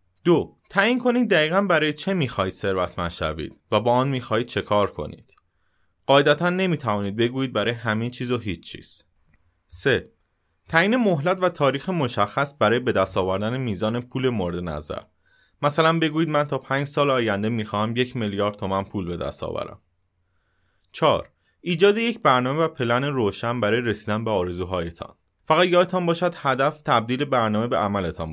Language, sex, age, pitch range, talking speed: Persian, male, 30-49, 95-135 Hz, 150 wpm